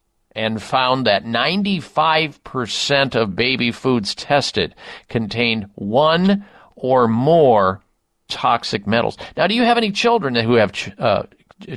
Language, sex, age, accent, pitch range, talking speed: English, male, 50-69, American, 120-160 Hz, 120 wpm